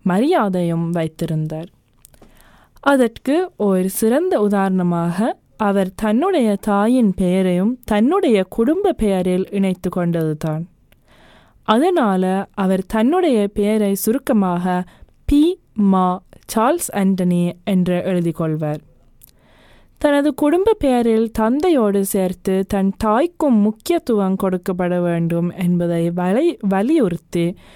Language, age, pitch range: Tamil, 20-39, 175-225 Hz